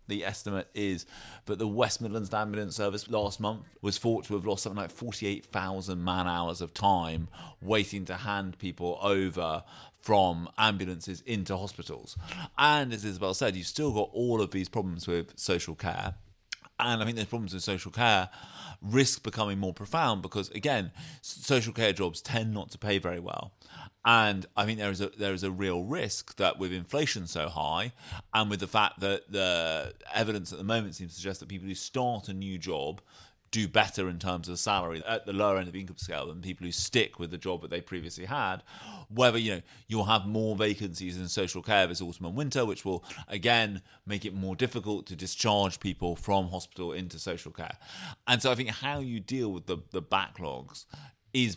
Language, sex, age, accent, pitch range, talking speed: English, male, 30-49, British, 90-110 Hz, 195 wpm